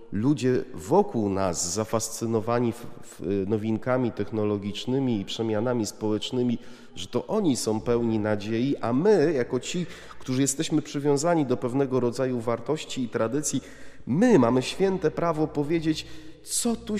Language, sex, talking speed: Polish, male, 125 wpm